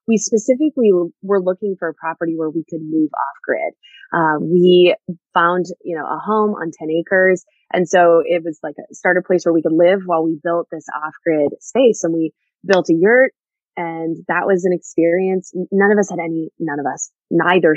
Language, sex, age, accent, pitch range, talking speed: English, female, 20-39, American, 165-205 Hz, 205 wpm